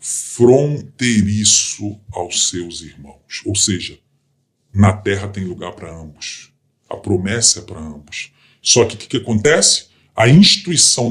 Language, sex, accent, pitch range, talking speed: Portuguese, female, Brazilian, 115-170 Hz, 130 wpm